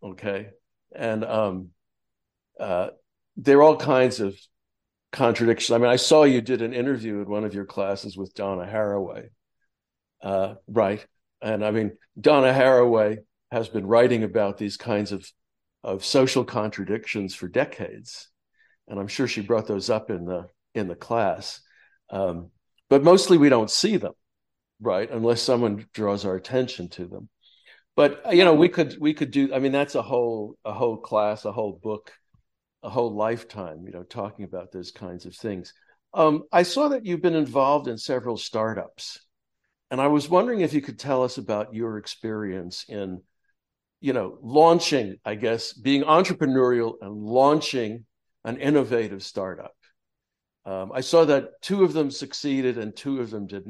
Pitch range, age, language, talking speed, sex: 100-135 Hz, 60-79, English, 170 wpm, male